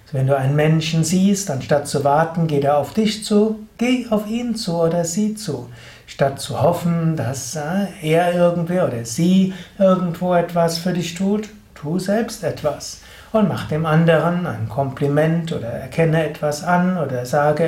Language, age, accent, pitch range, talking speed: German, 60-79, German, 145-185 Hz, 165 wpm